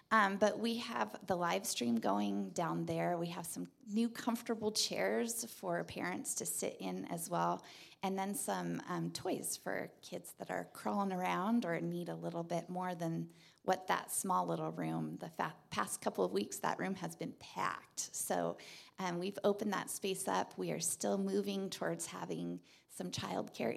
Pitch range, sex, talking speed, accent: 150-215 Hz, female, 180 wpm, American